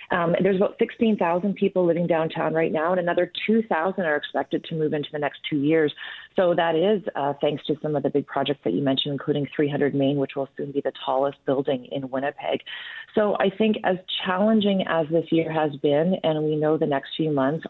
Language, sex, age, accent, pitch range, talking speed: English, female, 40-59, American, 140-175 Hz, 215 wpm